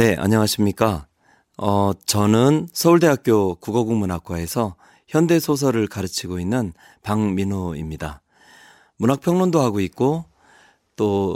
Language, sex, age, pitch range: Korean, male, 30-49, 95-135 Hz